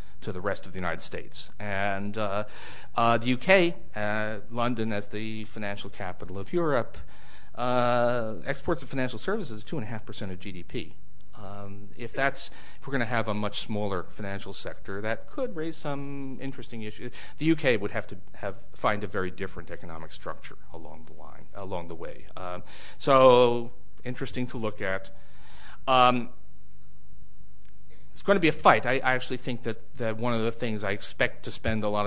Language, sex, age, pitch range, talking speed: English, male, 40-59, 95-120 Hz, 190 wpm